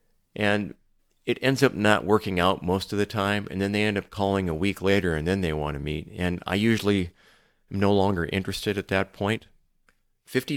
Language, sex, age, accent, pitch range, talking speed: English, male, 40-59, American, 85-110 Hz, 210 wpm